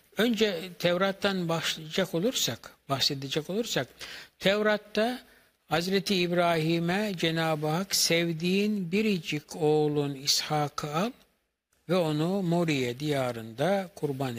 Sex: male